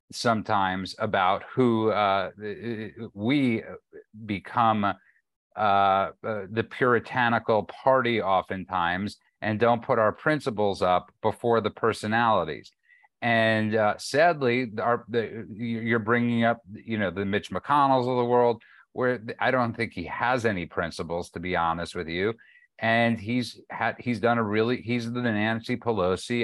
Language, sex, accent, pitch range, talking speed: English, male, American, 105-125 Hz, 140 wpm